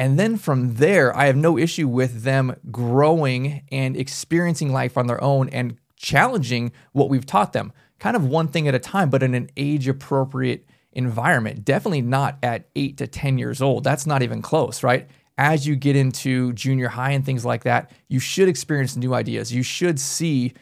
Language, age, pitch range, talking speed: English, 20-39, 125-145 Hz, 190 wpm